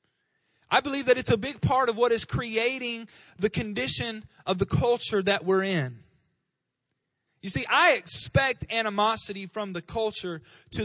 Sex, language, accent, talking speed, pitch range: male, English, American, 155 wpm, 145-220 Hz